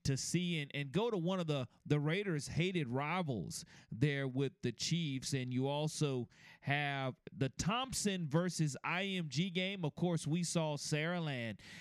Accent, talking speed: American, 165 wpm